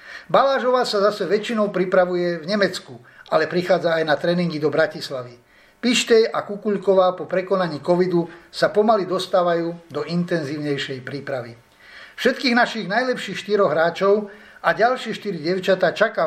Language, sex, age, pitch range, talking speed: Slovak, male, 60-79, 160-205 Hz, 135 wpm